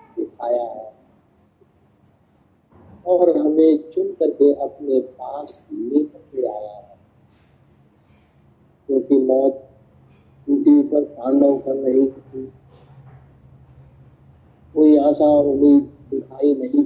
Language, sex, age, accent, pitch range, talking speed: Hindi, male, 50-69, native, 130-150 Hz, 70 wpm